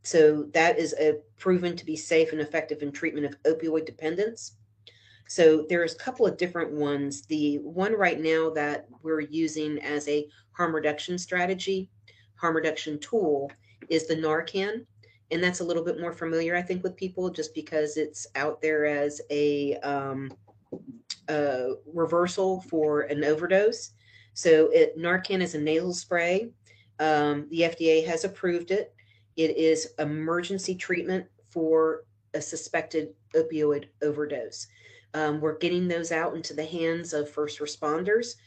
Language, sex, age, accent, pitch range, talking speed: English, female, 40-59, American, 145-170 Hz, 150 wpm